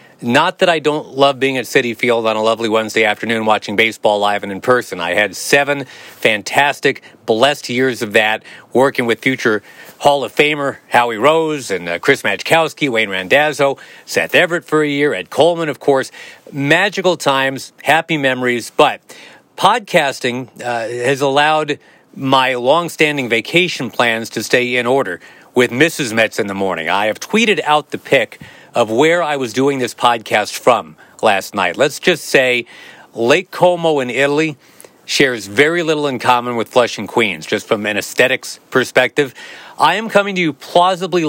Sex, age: male, 40-59